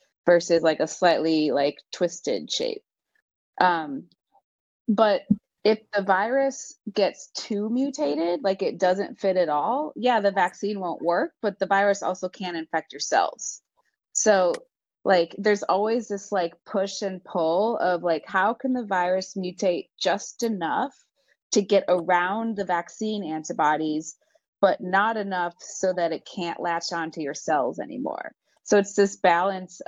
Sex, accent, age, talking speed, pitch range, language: female, American, 30-49, 150 wpm, 170-210 Hz, English